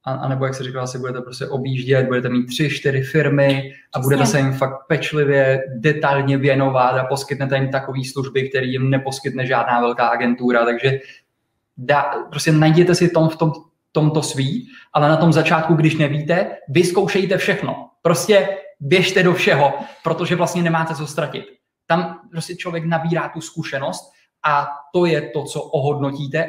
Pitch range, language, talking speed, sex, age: 135-160 Hz, Czech, 160 wpm, male, 20-39